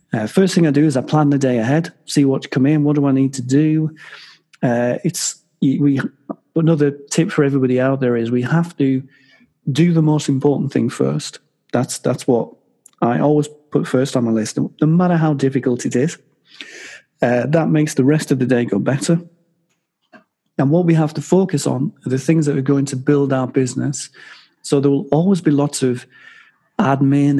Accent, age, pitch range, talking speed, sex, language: British, 30-49, 130-155 Hz, 200 wpm, male, English